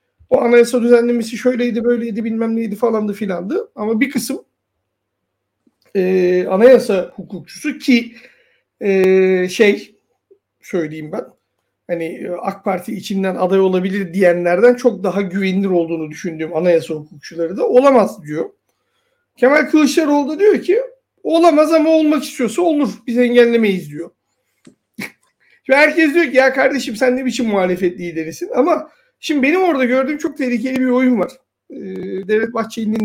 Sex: male